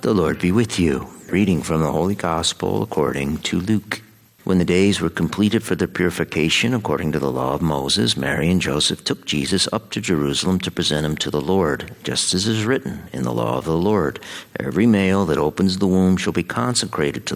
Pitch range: 75-100 Hz